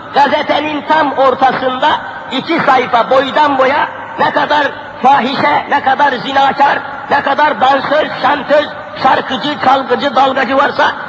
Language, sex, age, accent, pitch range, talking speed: Turkish, male, 50-69, native, 270-300 Hz, 115 wpm